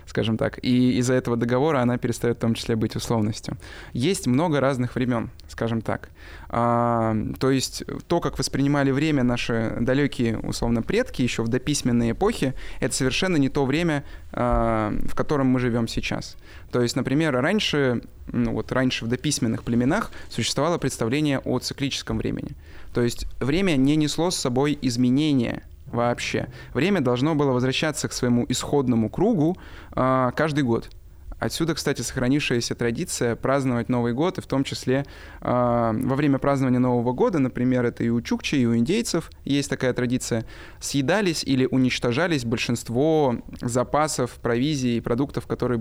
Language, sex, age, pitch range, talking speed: Russian, male, 20-39, 115-140 Hz, 150 wpm